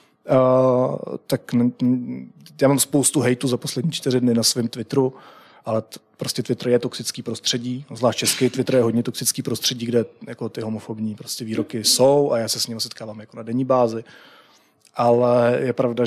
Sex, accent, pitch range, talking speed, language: male, native, 120-145 Hz, 175 wpm, Czech